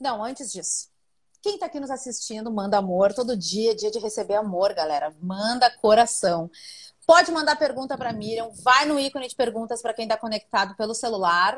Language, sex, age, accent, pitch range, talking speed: Portuguese, female, 30-49, Brazilian, 220-280 Hz, 180 wpm